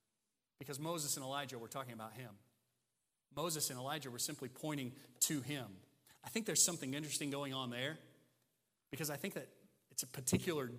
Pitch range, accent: 145-210 Hz, American